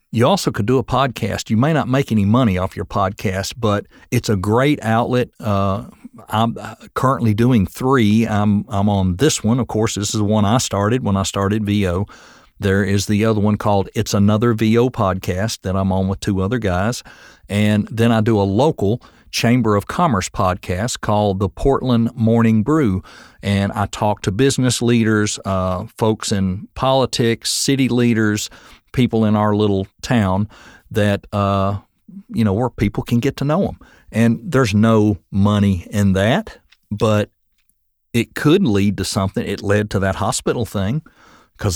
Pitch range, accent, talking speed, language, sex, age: 95-115 Hz, American, 175 wpm, English, male, 50-69